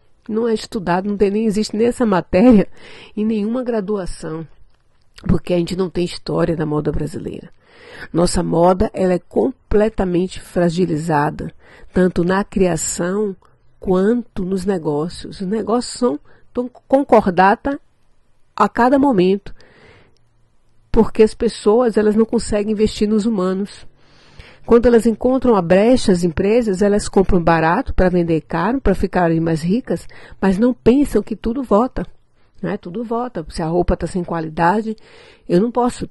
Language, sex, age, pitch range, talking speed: Portuguese, female, 50-69, 170-220 Hz, 145 wpm